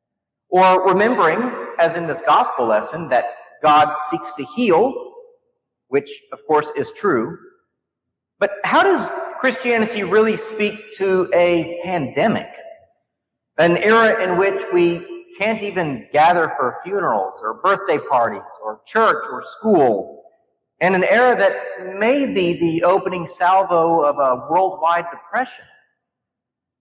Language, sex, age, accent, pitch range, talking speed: English, male, 40-59, American, 170-240 Hz, 125 wpm